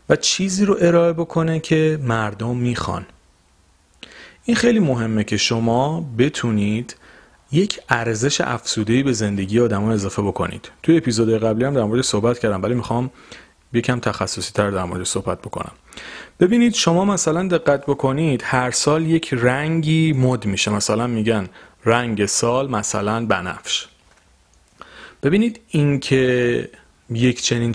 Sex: male